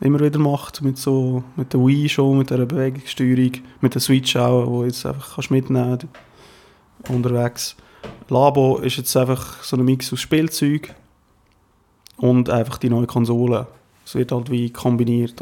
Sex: male